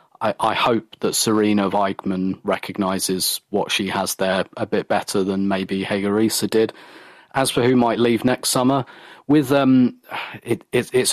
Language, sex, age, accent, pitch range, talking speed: English, male, 30-49, British, 100-120 Hz, 160 wpm